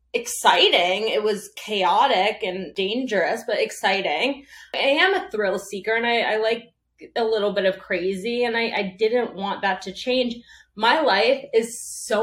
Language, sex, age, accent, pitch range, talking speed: English, female, 20-39, American, 200-245 Hz, 165 wpm